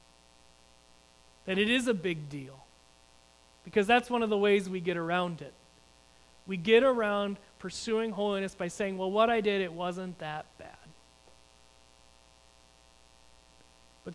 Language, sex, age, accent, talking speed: English, male, 30-49, American, 135 wpm